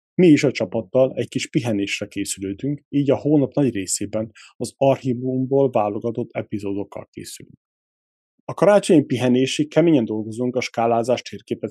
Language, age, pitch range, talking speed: Hungarian, 30-49, 110-135 Hz, 135 wpm